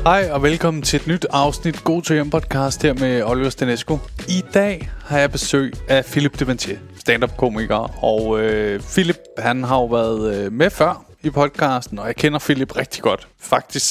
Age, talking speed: 20-39, 180 wpm